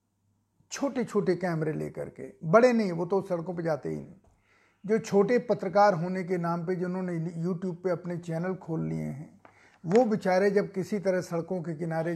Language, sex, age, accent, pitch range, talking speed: Hindi, male, 50-69, native, 155-195 Hz, 185 wpm